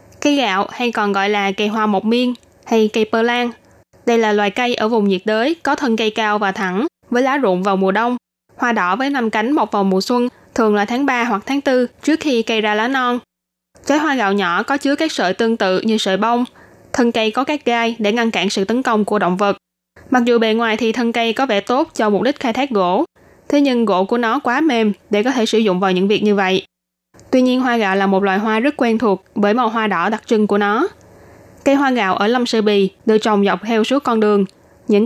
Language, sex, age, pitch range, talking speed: Vietnamese, female, 10-29, 200-245 Hz, 255 wpm